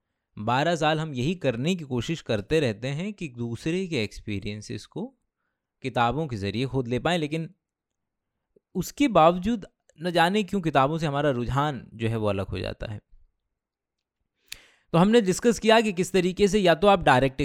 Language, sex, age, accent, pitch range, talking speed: Hindi, male, 20-39, native, 115-185 Hz, 170 wpm